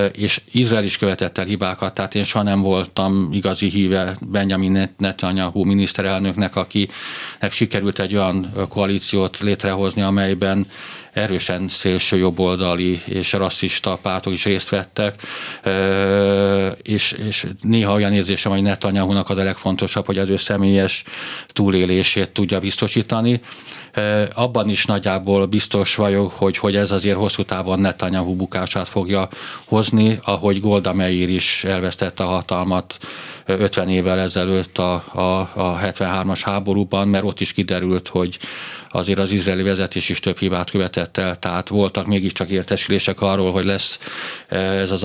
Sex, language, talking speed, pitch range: male, Hungarian, 135 wpm, 95-100 Hz